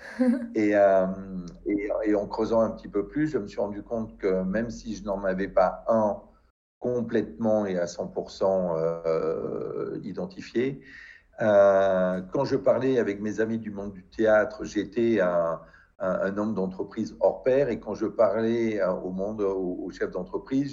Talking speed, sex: 170 wpm, male